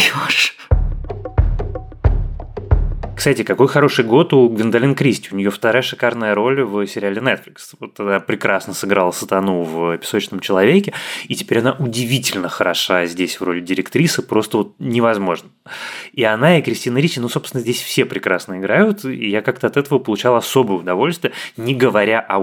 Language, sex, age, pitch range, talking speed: Russian, male, 20-39, 95-130 Hz, 155 wpm